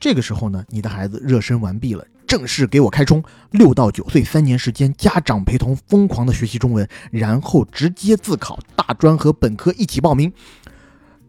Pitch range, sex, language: 110-165 Hz, male, Chinese